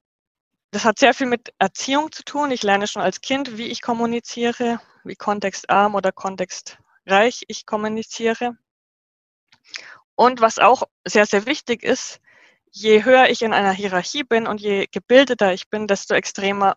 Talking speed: 155 wpm